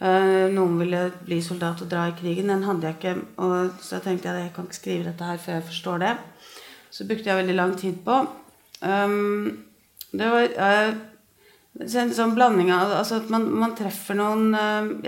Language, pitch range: English, 170-215 Hz